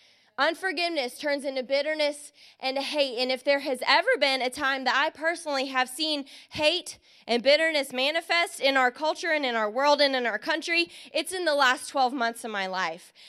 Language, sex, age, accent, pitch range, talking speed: English, female, 20-39, American, 255-315 Hz, 195 wpm